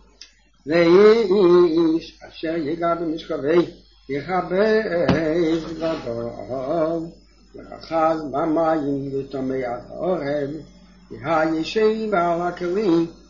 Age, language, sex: 60-79, English, male